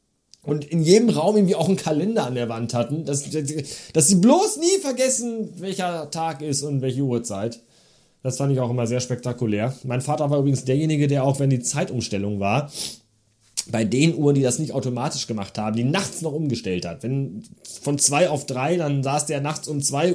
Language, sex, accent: German, male, German